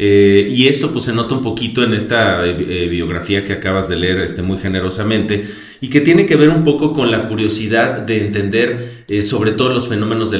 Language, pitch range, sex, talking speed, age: Spanish, 95-120 Hz, male, 200 wpm, 40-59